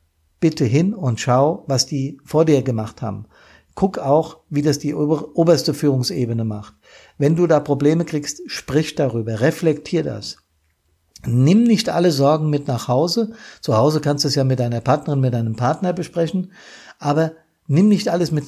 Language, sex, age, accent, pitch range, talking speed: German, male, 50-69, German, 130-165 Hz, 170 wpm